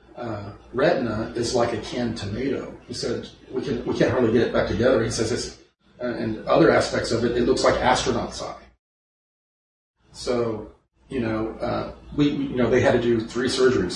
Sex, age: male, 40-59